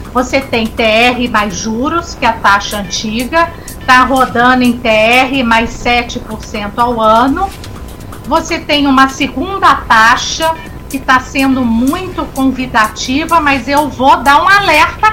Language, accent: Portuguese, Brazilian